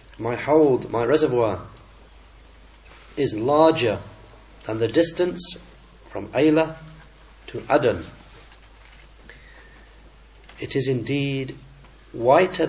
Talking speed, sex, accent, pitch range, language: 80 wpm, male, British, 105-140 Hz, English